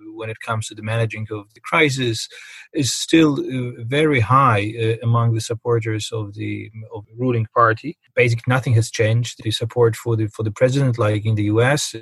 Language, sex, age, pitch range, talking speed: English, male, 30-49, 115-140 Hz, 175 wpm